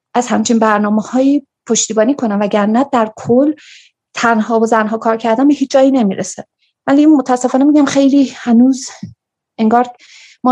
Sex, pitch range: female, 210-255 Hz